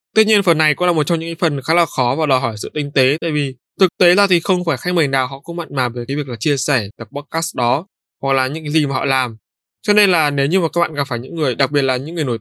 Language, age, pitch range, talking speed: Vietnamese, 20-39, 130-165 Hz, 325 wpm